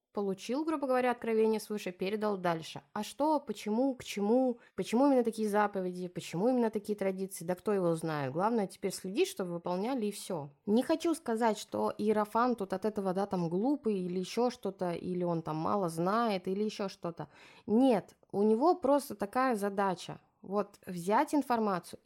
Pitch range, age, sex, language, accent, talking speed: 180-230 Hz, 20-39, female, Russian, native, 170 wpm